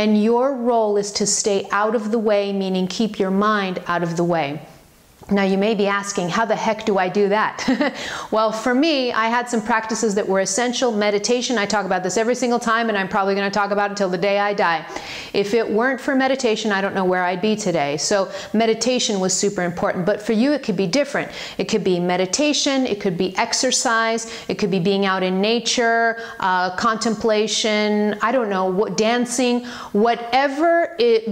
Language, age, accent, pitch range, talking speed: English, 40-59, American, 195-230 Hz, 210 wpm